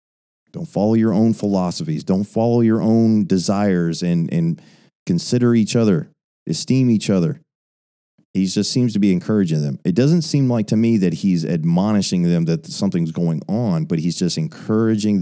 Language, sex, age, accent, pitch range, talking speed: English, male, 30-49, American, 85-115 Hz, 170 wpm